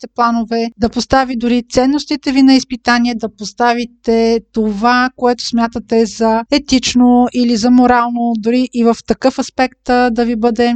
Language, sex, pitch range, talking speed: Bulgarian, female, 230-265 Hz, 145 wpm